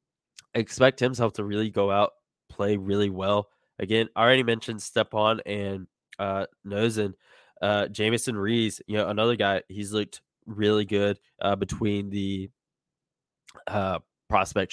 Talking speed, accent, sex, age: 130 wpm, American, male, 20-39